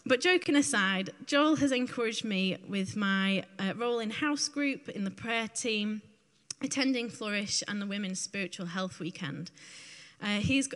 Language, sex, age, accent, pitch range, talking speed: English, female, 20-39, British, 175-235 Hz, 155 wpm